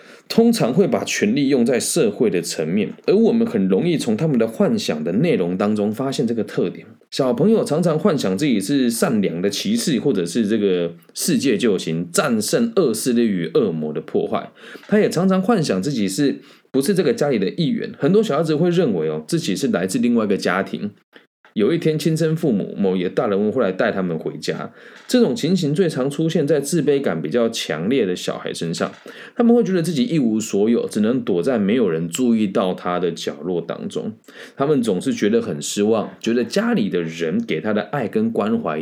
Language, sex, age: Chinese, male, 20-39